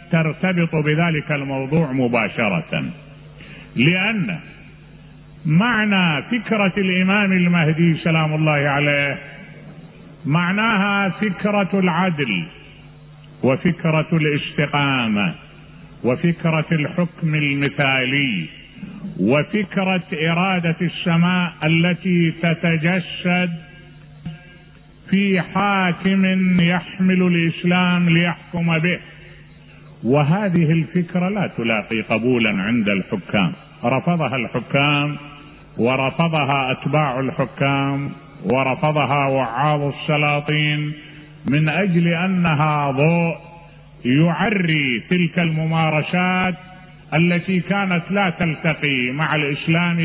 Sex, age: male, 50-69